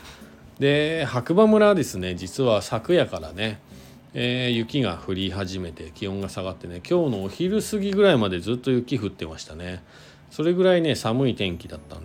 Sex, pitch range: male, 90-130 Hz